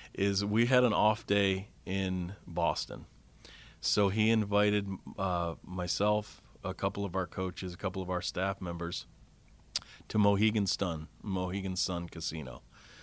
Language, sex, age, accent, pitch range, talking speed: English, male, 40-59, American, 95-120 Hz, 140 wpm